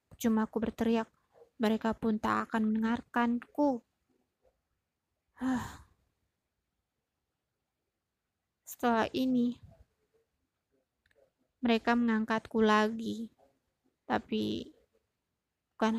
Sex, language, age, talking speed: female, Indonesian, 20-39, 60 wpm